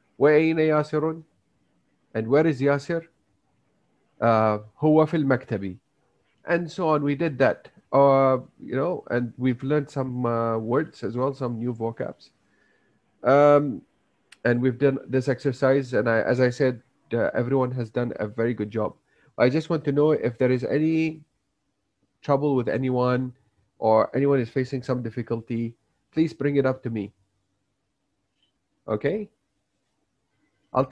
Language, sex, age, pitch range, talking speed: Malay, male, 30-49, 115-145 Hz, 155 wpm